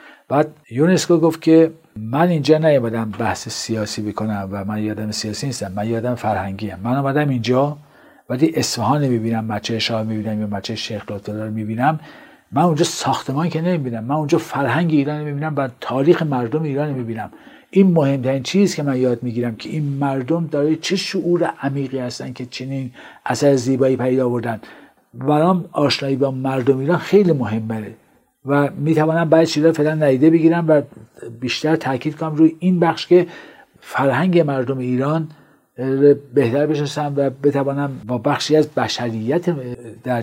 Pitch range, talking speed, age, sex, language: 125-160 Hz, 155 wpm, 50-69, male, Persian